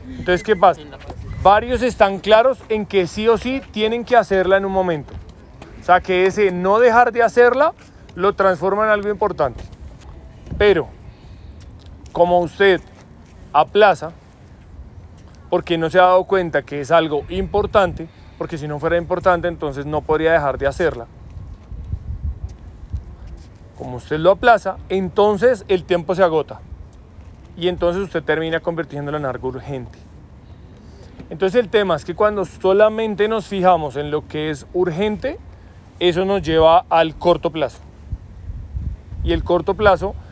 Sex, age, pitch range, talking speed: male, 30-49, 135-190 Hz, 145 wpm